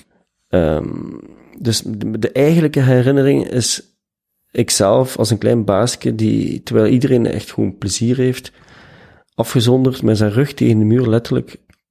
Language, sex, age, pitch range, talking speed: Dutch, male, 40-59, 105-125 Hz, 135 wpm